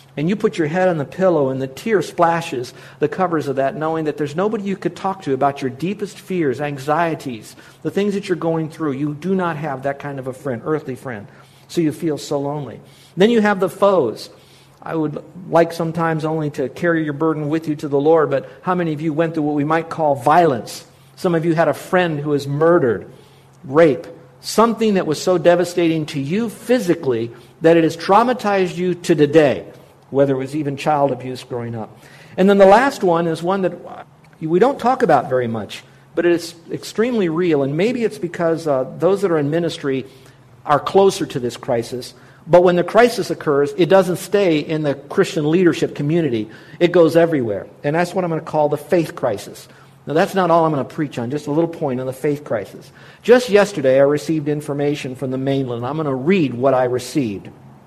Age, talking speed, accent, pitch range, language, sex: 50-69, 215 wpm, American, 140-175 Hz, English, male